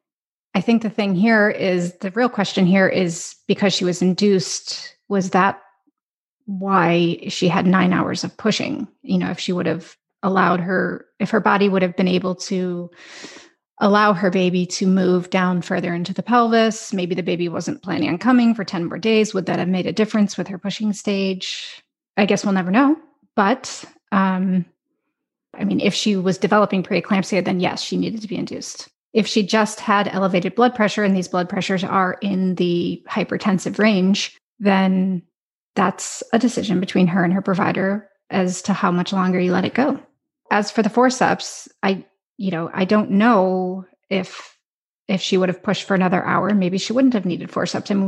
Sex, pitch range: female, 185-215 Hz